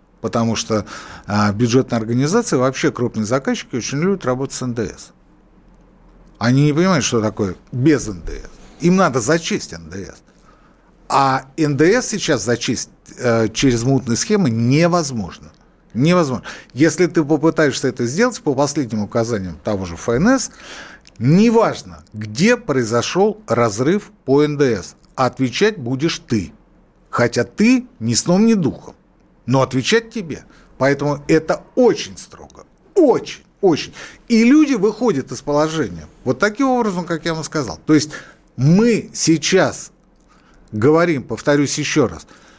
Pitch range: 115-175 Hz